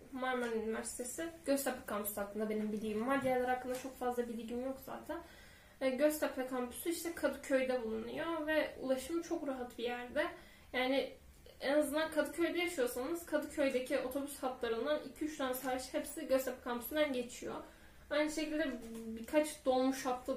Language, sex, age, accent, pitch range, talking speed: Turkish, female, 10-29, native, 245-295 Hz, 130 wpm